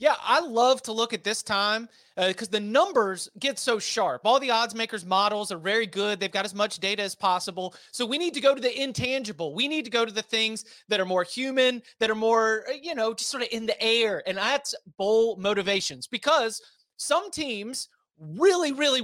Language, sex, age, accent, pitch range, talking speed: English, male, 30-49, American, 205-260 Hz, 220 wpm